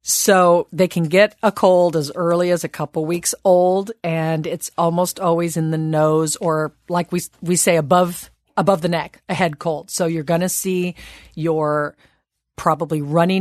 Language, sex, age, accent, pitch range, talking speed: English, female, 40-59, American, 160-190 Hz, 180 wpm